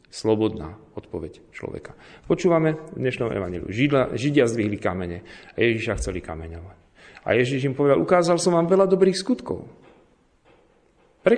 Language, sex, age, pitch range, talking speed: Slovak, male, 40-59, 95-160 Hz, 130 wpm